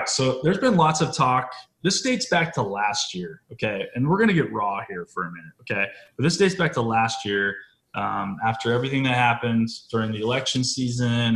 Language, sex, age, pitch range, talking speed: English, male, 20-39, 105-120 Hz, 205 wpm